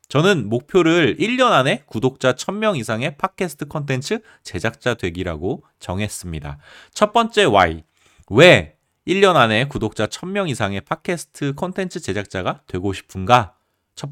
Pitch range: 95-145 Hz